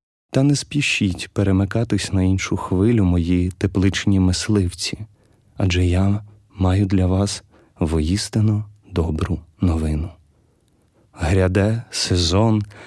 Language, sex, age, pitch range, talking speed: Ukrainian, male, 30-49, 90-110 Hz, 95 wpm